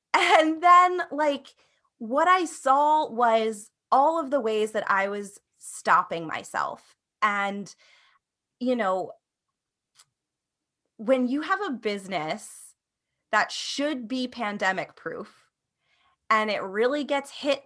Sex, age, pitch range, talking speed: female, 20-39, 215-290 Hz, 115 wpm